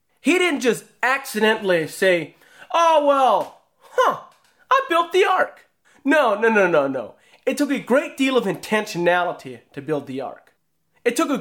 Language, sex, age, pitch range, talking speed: English, male, 30-49, 175-250 Hz, 165 wpm